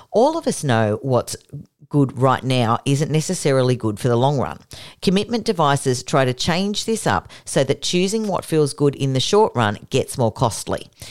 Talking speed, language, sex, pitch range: 190 wpm, English, female, 125-165 Hz